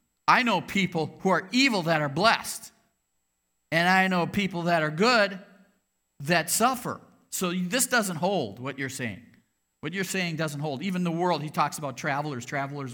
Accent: American